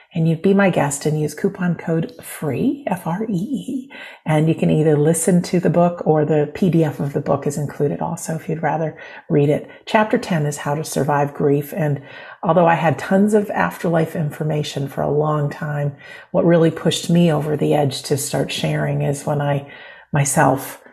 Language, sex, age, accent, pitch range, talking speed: English, female, 50-69, American, 150-190 Hz, 190 wpm